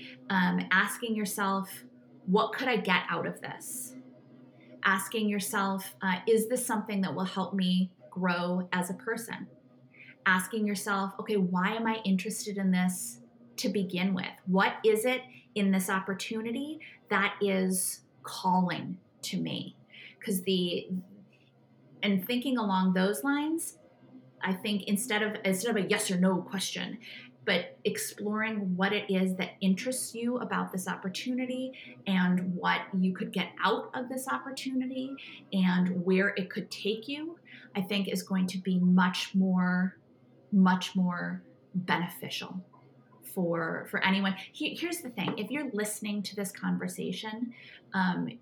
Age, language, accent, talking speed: 30-49, English, American, 145 wpm